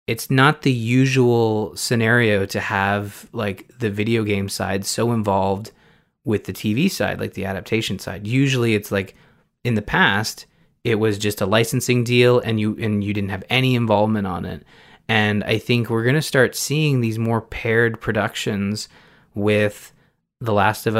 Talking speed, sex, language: 170 wpm, male, English